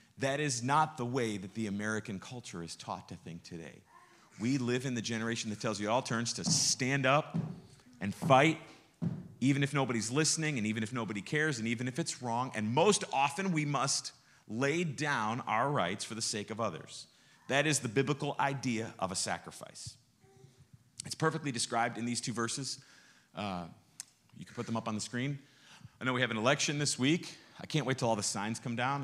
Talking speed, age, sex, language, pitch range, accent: 205 wpm, 40-59, male, English, 105-135 Hz, American